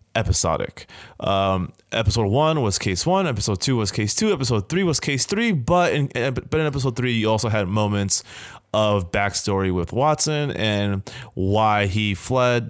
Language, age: English, 20-39